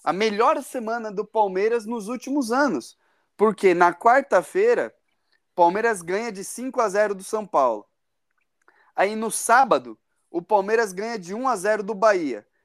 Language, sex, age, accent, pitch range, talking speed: Portuguese, male, 20-39, Brazilian, 200-260 Hz, 135 wpm